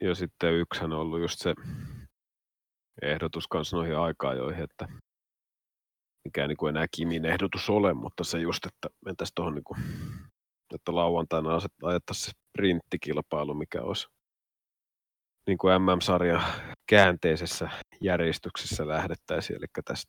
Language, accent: Finnish, native